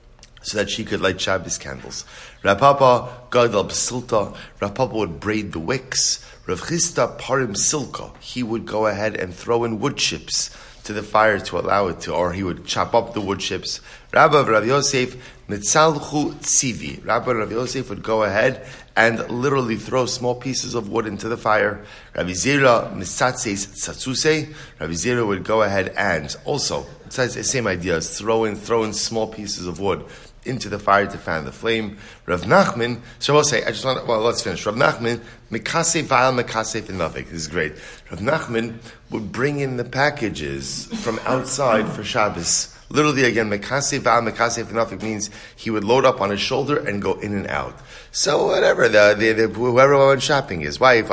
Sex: male